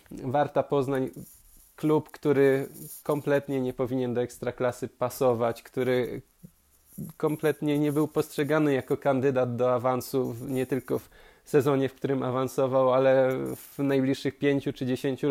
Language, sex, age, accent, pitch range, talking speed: Polish, male, 20-39, native, 130-145 Hz, 125 wpm